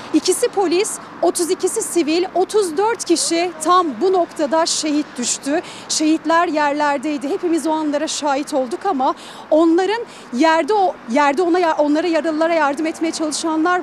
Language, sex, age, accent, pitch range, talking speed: Turkish, female, 40-59, native, 295-350 Hz, 125 wpm